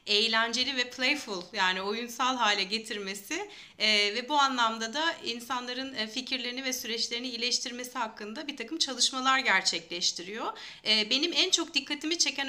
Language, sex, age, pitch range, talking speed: Turkish, female, 30-49, 225-290 Hz, 135 wpm